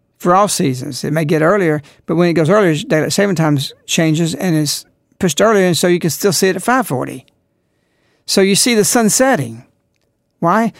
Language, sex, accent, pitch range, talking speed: English, male, American, 160-230 Hz, 200 wpm